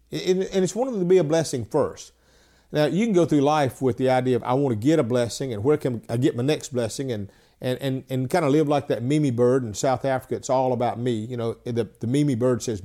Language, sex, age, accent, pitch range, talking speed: English, male, 50-69, American, 125-155 Hz, 275 wpm